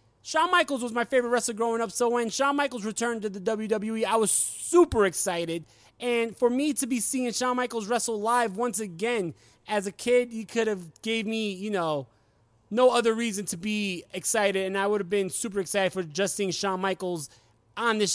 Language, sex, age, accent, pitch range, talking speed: English, male, 20-39, American, 185-240 Hz, 205 wpm